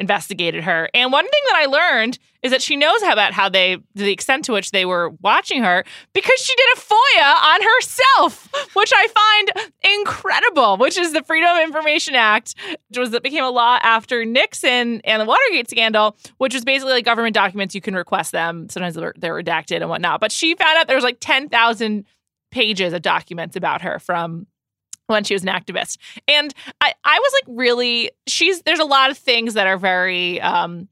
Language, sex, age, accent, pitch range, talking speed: English, female, 20-39, American, 195-285 Hz, 200 wpm